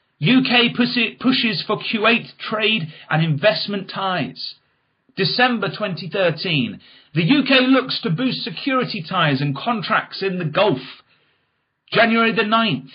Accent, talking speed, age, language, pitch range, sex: British, 120 wpm, 40-59, English, 150-225 Hz, male